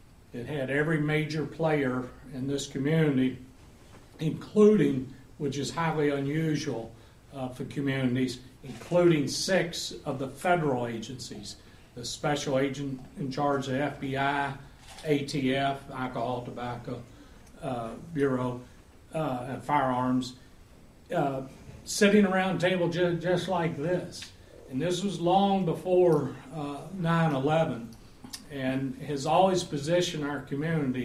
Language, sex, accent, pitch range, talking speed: English, male, American, 125-155 Hz, 110 wpm